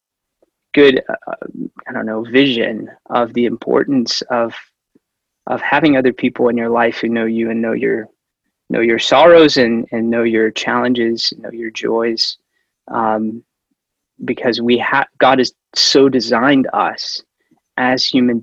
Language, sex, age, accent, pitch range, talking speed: English, male, 20-39, American, 115-130 Hz, 145 wpm